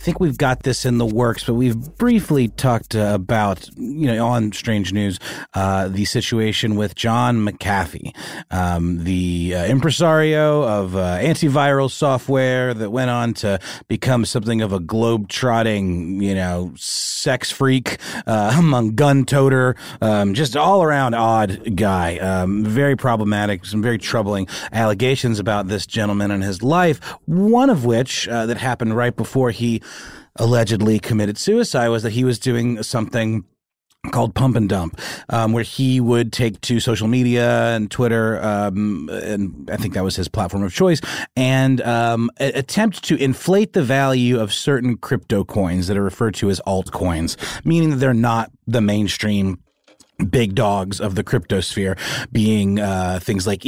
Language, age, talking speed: English, 30-49, 160 wpm